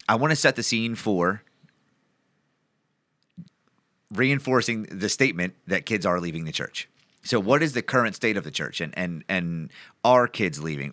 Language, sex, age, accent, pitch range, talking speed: English, male, 30-49, American, 90-115 Hz, 170 wpm